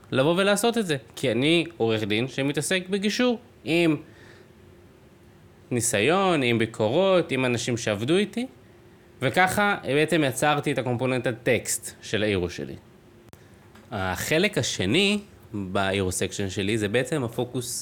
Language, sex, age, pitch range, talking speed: Hebrew, male, 20-39, 110-160 Hz, 120 wpm